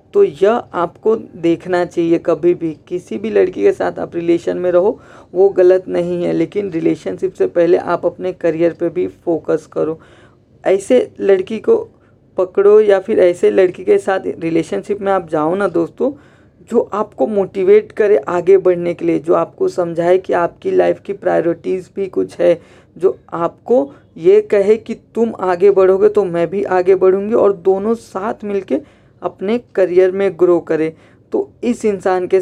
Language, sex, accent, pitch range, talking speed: Hindi, female, native, 175-205 Hz, 170 wpm